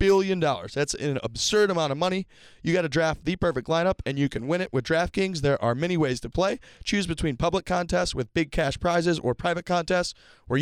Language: English